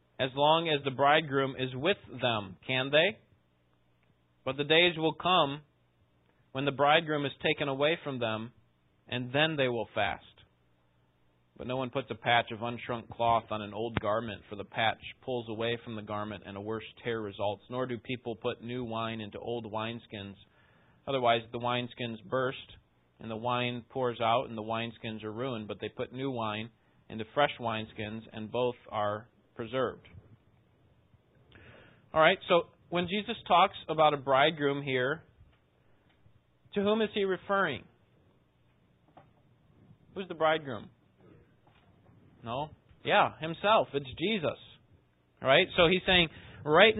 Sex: male